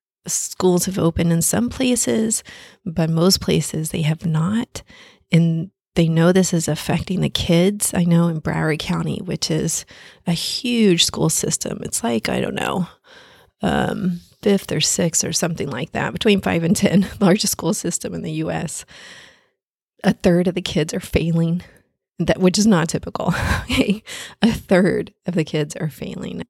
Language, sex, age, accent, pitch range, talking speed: English, female, 30-49, American, 160-190 Hz, 170 wpm